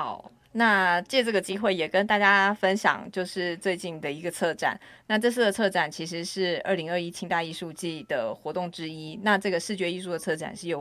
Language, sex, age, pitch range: Chinese, female, 30-49, 170-205 Hz